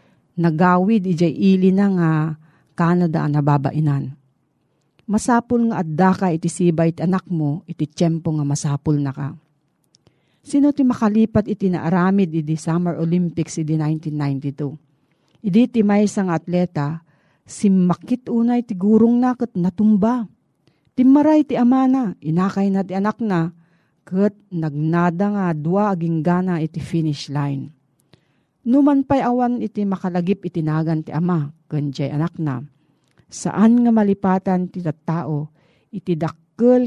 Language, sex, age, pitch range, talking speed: Filipino, female, 40-59, 155-200 Hz, 125 wpm